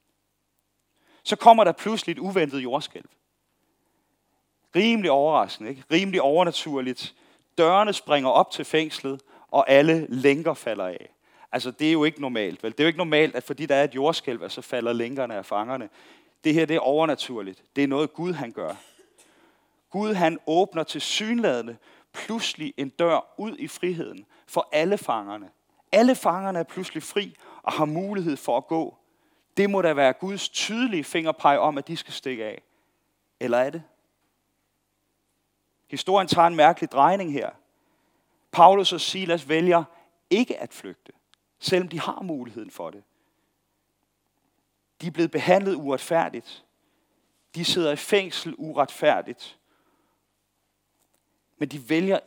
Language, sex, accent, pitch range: Danish, male, native, 140-190 Hz